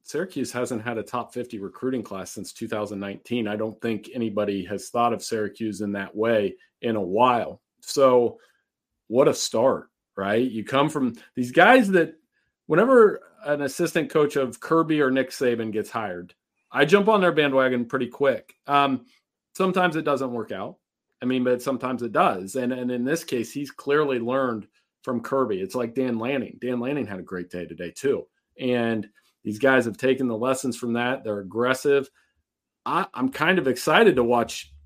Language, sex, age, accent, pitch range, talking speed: English, male, 40-59, American, 115-150 Hz, 180 wpm